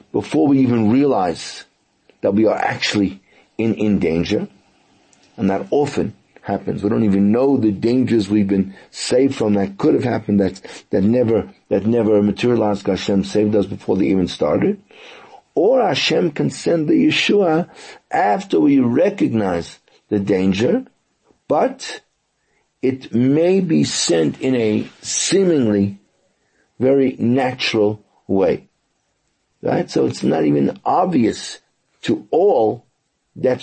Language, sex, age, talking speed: English, male, 50-69, 130 wpm